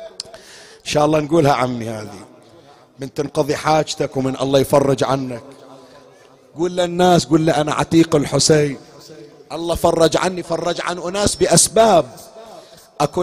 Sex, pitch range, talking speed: male, 160-200 Hz, 125 wpm